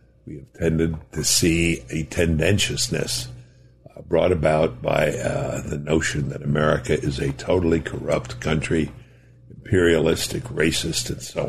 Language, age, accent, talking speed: English, 60-79, American, 130 wpm